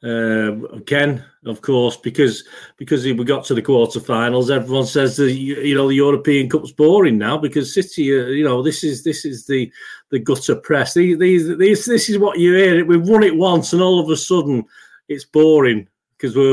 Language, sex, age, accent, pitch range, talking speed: English, male, 40-59, British, 120-175 Hz, 195 wpm